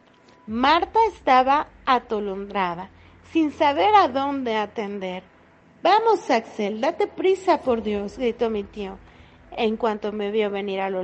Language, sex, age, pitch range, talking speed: Spanish, female, 40-59, 215-295 Hz, 130 wpm